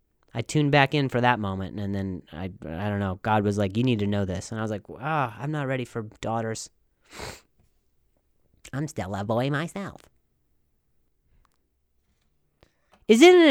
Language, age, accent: English, 30-49, American